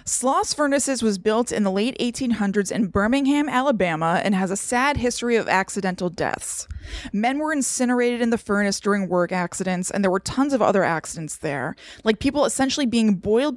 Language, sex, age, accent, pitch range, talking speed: English, female, 20-39, American, 195-260 Hz, 180 wpm